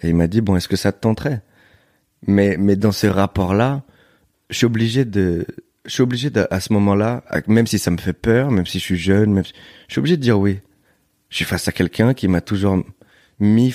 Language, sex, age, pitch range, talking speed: French, male, 30-49, 95-115 Hz, 235 wpm